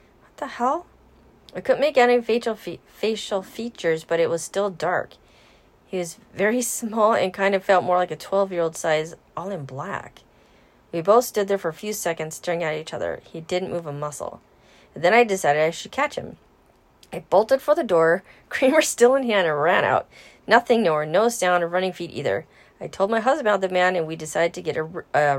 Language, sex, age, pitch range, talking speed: English, female, 30-49, 160-205 Hz, 220 wpm